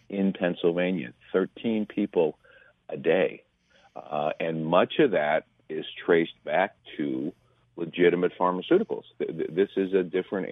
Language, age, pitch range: English, 50-69, 80-100 Hz